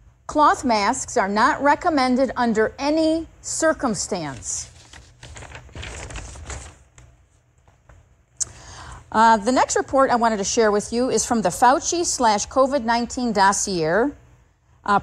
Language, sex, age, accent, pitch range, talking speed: English, female, 50-69, American, 180-260 Hz, 105 wpm